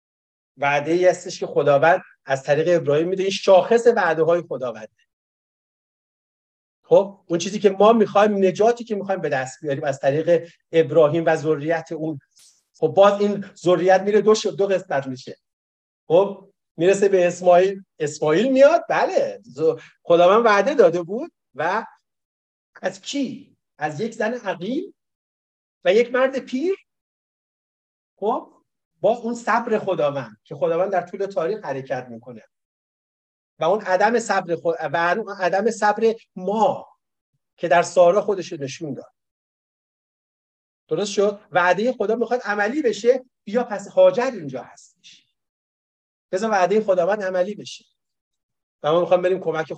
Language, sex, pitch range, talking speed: Persian, male, 155-210 Hz, 135 wpm